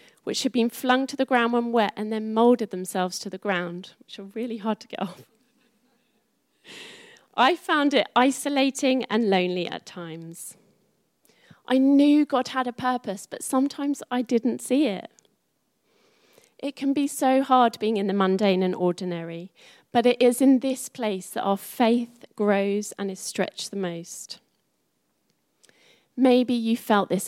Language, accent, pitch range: English, British, 195-250 Hz